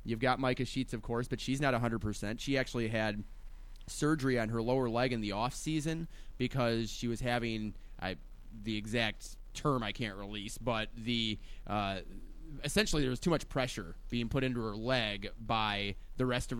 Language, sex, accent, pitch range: English, male, American, 110-135 Hz